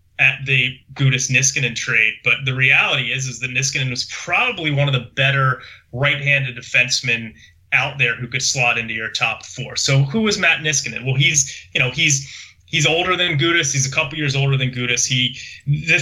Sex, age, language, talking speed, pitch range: male, 30-49, English, 195 wpm, 125-145 Hz